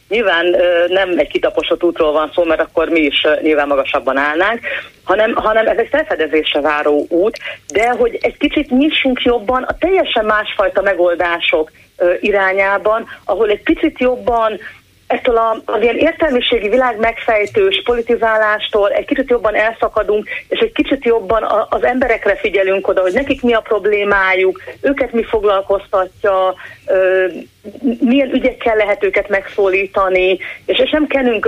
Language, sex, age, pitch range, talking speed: Hungarian, female, 40-59, 180-260 Hz, 135 wpm